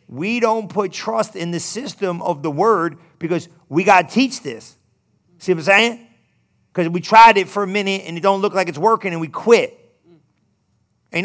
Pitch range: 175-235 Hz